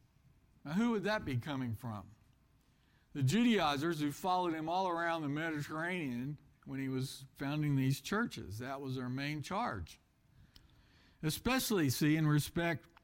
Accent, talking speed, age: American, 145 wpm, 60-79